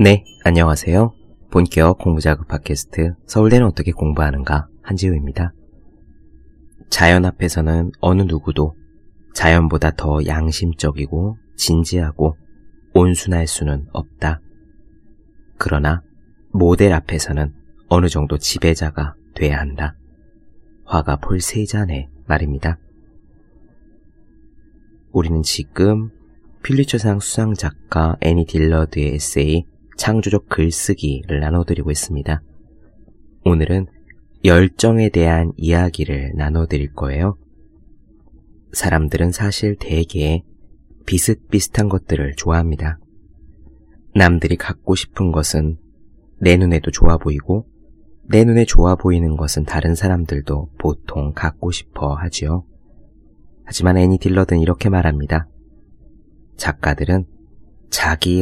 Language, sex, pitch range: Korean, male, 75-95 Hz